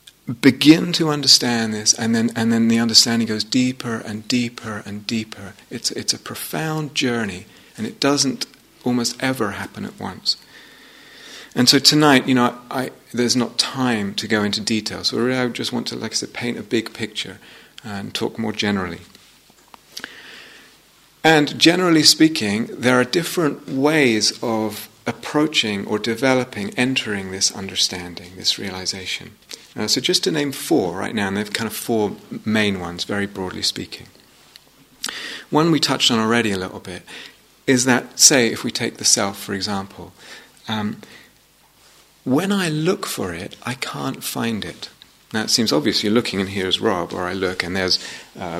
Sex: male